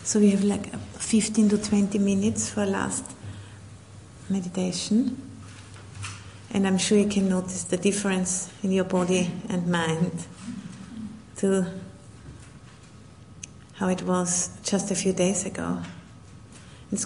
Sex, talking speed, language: female, 125 wpm, English